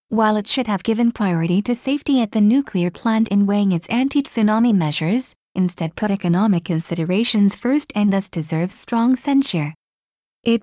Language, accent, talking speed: English, American, 160 wpm